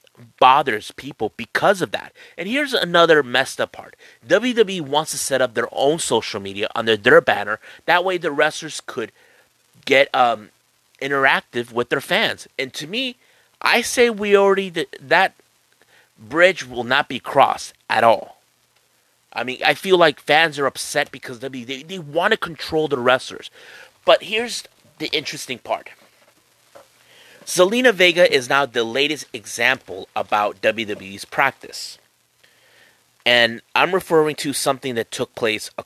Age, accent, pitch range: 30-49, American, 115-175 Hz